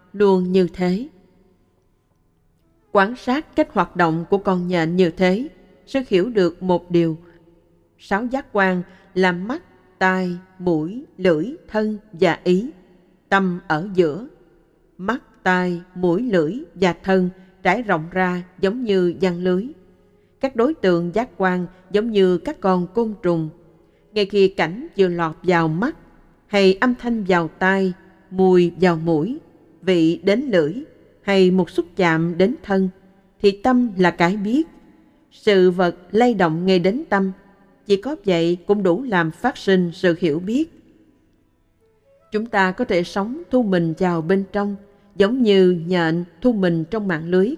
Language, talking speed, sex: Vietnamese, 155 wpm, female